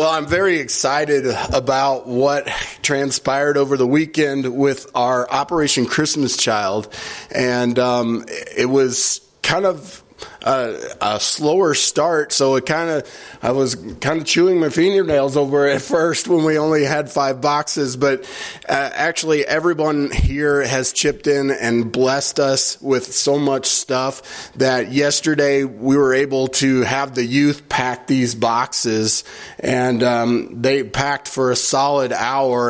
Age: 20-39